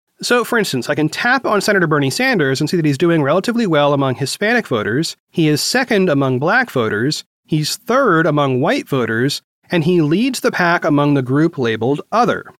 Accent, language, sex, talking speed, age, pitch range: American, English, male, 195 wpm, 30-49, 140-205 Hz